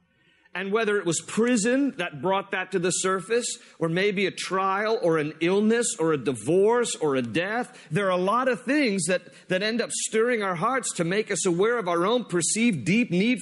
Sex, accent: male, American